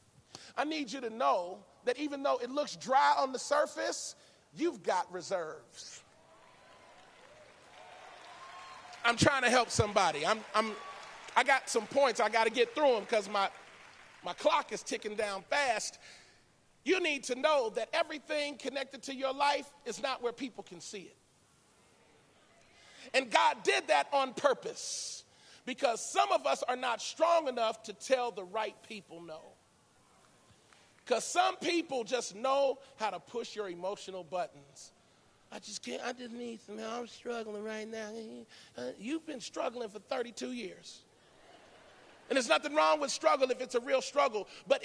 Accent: American